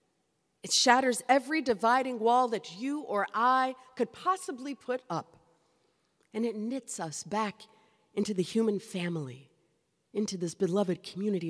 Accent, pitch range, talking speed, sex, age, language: American, 175-250 Hz, 135 wpm, female, 50-69, English